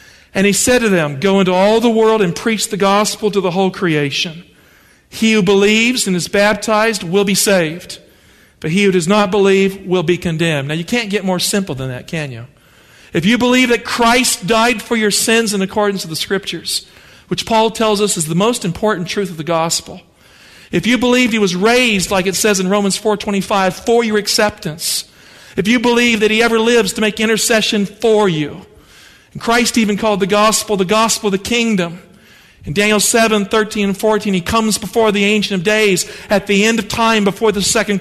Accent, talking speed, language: American, 205 wpm, English